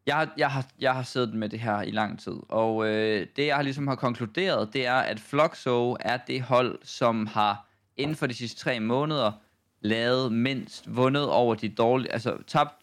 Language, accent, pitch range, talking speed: Danish, native, 110-140 Hz, 200 wpm